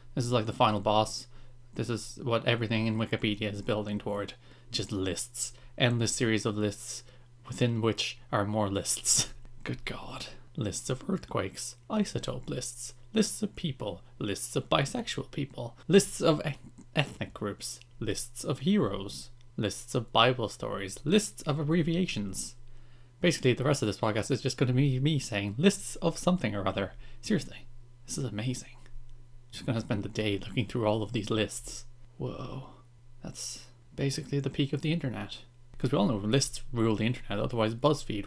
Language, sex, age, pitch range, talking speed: English, male, 20-39, 110-130 Hz, 165 wpm